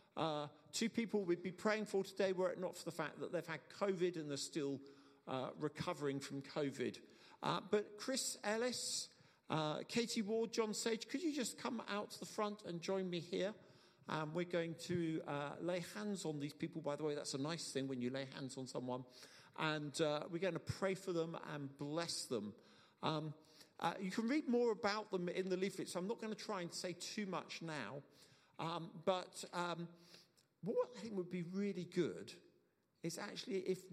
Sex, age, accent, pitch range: male, 50-69, British, 155-195 Hz